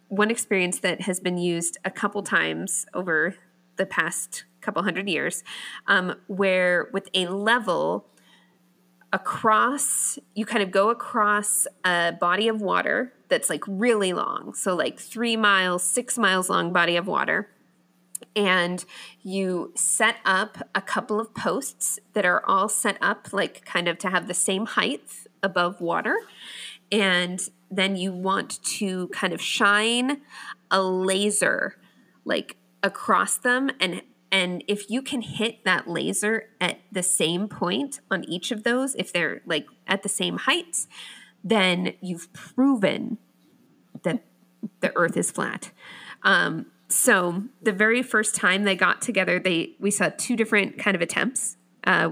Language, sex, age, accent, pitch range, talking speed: English, female, 20-39, American, 180-215 Hz, 150 wpm